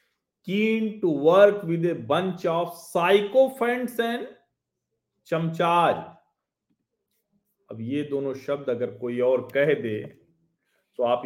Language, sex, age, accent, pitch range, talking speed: Hindi, male, 40-59, native, 120-190 Hz, 110 wpm